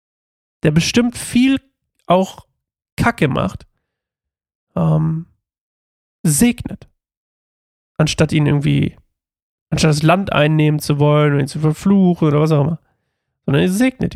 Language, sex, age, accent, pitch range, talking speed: German, male, 40-59, German, 145-180 Hz, 120 wpm